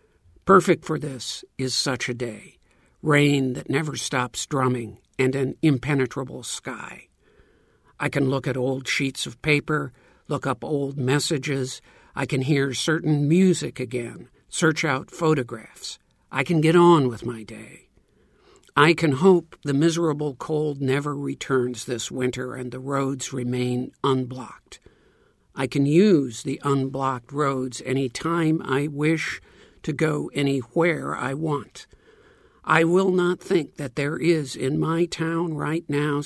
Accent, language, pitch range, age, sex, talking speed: American, English, 130-155 Hz, 60-79, male, 140 wpm